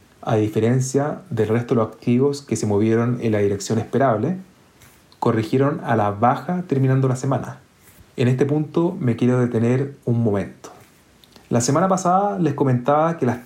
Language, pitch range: Spanish, 115-145 Hz